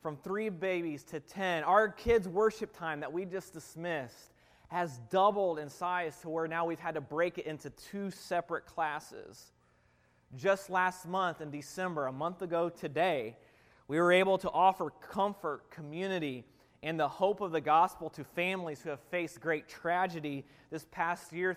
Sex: male